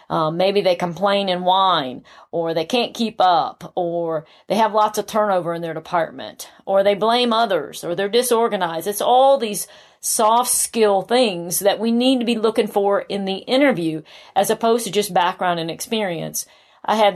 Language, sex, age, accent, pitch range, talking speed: English, female, 40-59, American, 175-215 Hz, 180 wpm